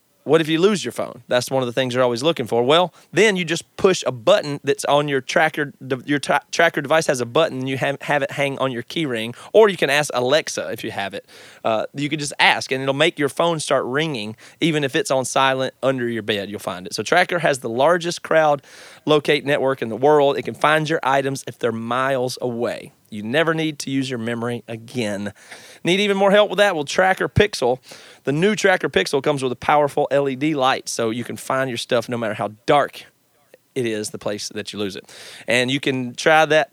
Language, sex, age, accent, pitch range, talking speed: English, male, 30-49, American, 120-155 Hz, 235 wpm